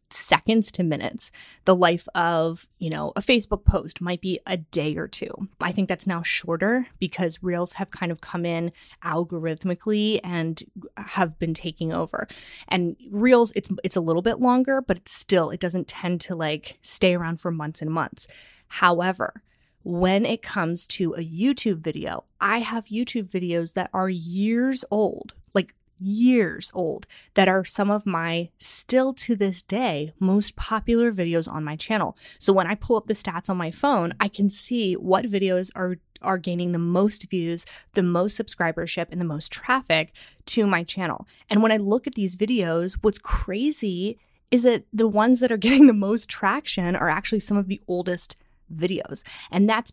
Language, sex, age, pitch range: English, female, 20-39, 175-215 Hz